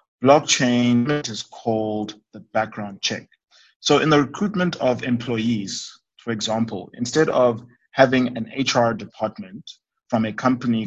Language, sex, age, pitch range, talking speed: English, male, 20-39, 110-130 Hz, 125 wpm